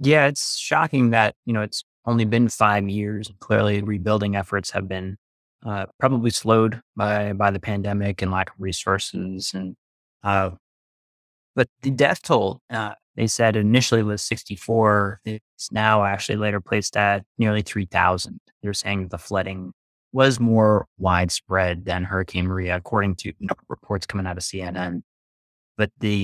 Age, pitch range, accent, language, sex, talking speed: 20-39, 95-110 Hz, American, English, male, 155 wpm